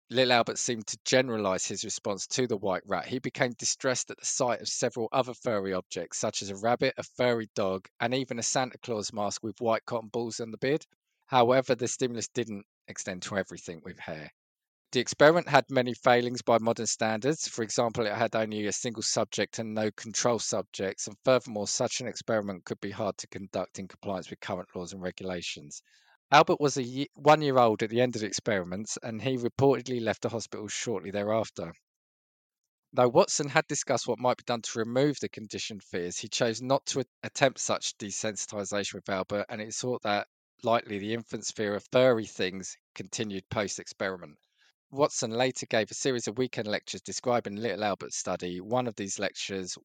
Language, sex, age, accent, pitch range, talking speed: English, male, 20-39, British, 100-125 Hz, 190 wpm